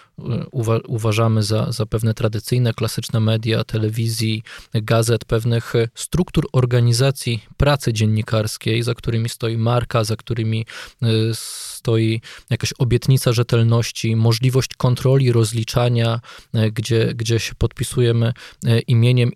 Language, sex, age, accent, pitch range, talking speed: Polish, male, 20-39, native, 115-130 Hz, 95 wpm